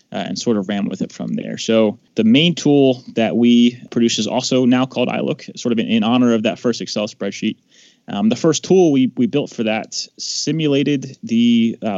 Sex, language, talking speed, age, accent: male, English, 215 wpm, 20-39, American